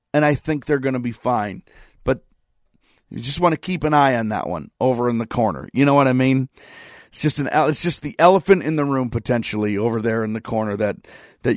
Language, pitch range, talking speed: English, 125-160 Hz, 240 wpm